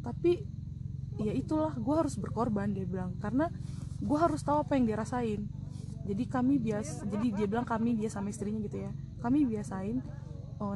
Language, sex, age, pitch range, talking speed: Indonesian, female, 20-39, 140-225 Hz, 165 wpm